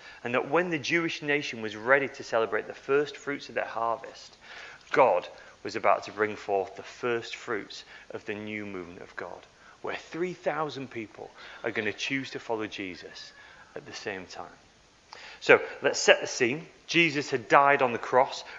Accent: British